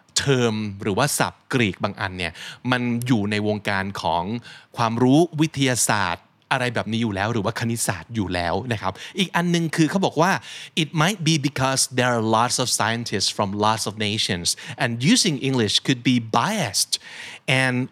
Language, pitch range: Thai, 110-145 Hz